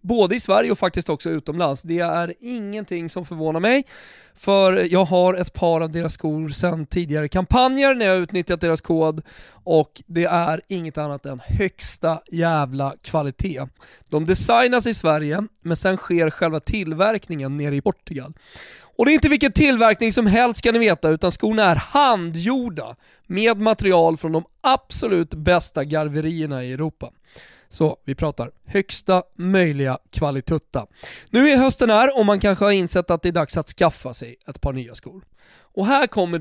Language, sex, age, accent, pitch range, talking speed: Swedish, male, 20-39, native, 155-210 Hz, 170 wpm